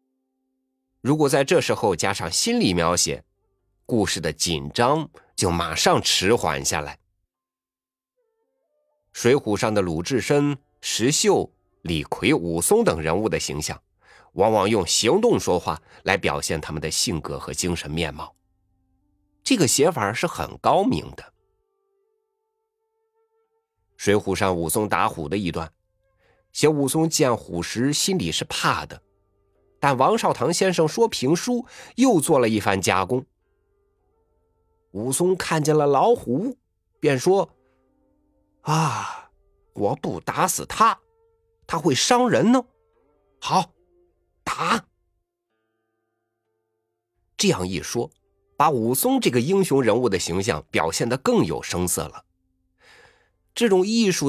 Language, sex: Chinese, male